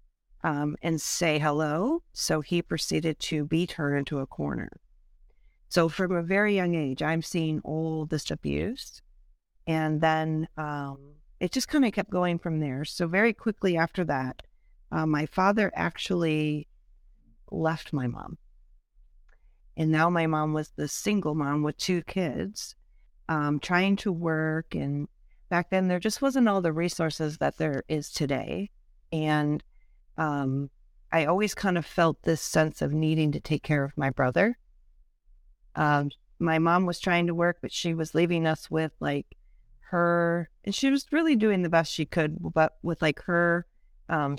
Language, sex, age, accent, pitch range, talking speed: English, female, 40-59, American, 155-190 Hz, 160 wpm